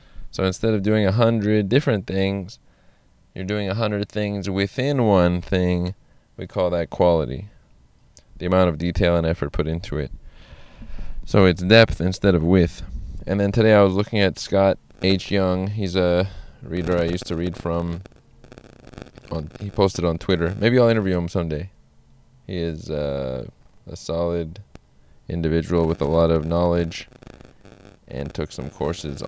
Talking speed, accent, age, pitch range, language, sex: 160 wpm, American, 20-39, 80-100 Hz, English, male